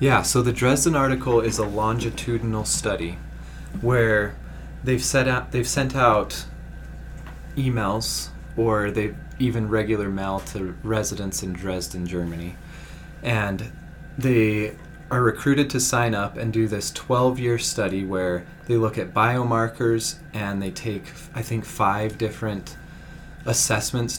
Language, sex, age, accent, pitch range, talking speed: English, male, 20-39, American, 100-125 Hz, 130 wpm